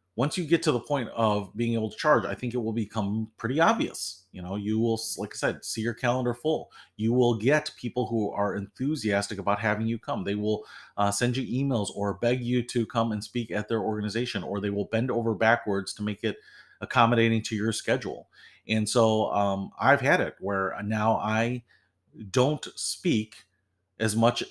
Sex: male